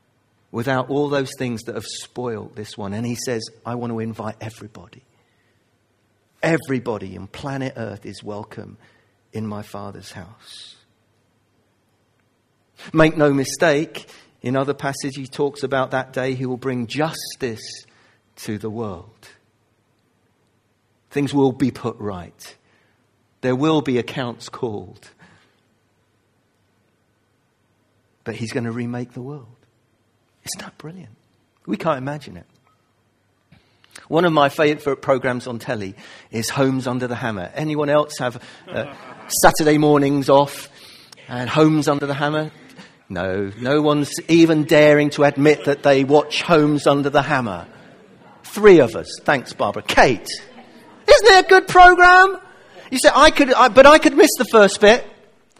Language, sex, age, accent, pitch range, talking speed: English, male, 40-59, British, 110-150 Hz, 140 wpm